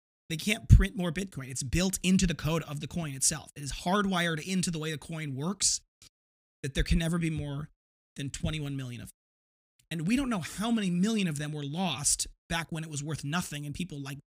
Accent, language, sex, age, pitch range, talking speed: American, English, male, 30-49, 130-160 Hz, 225 wpm